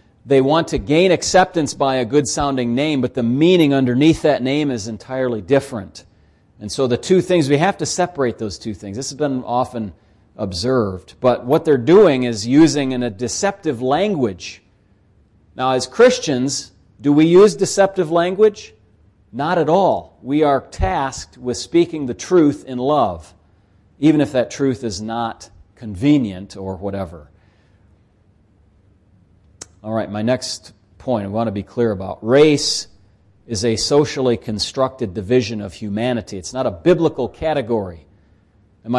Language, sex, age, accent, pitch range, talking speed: English, male, 40-59, American, 100-155 Hz, 150 wpm